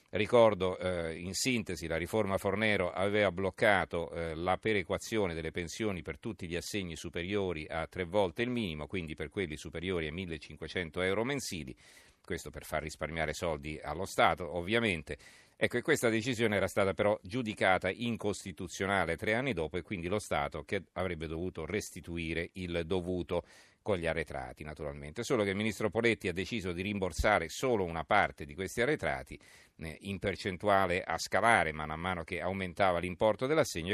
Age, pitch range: 40-59, 80-105 Hz